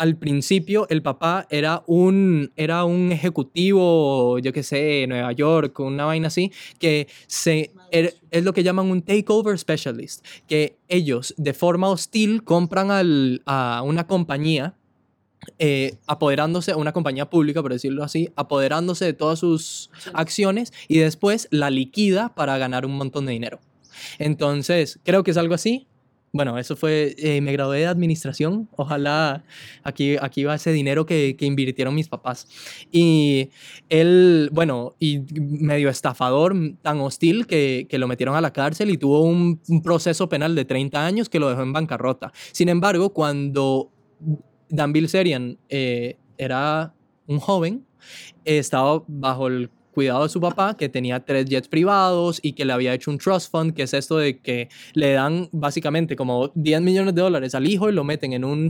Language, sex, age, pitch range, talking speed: Spanish, male, 20-39, 135-170 Hz, 170 wpm